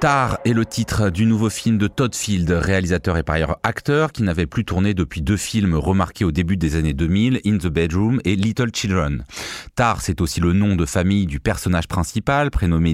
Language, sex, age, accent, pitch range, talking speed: French, male, 30-49, French, 85-110 Hz, 210 wpm